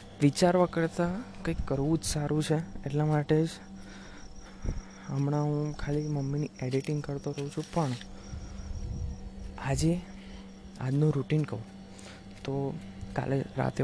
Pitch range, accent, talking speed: 100-140 Hz, native, 85 wpm